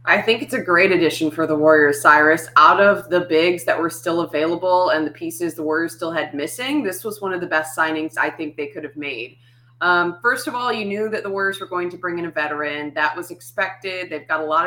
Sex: female